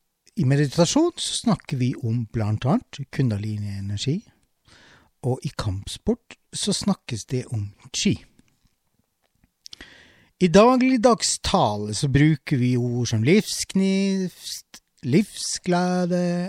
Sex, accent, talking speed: male, Swedish, 100 wpm